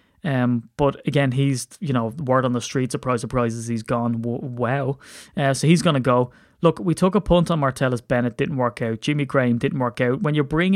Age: 20-39